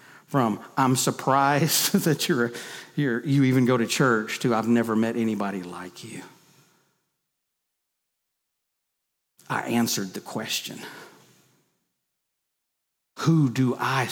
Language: English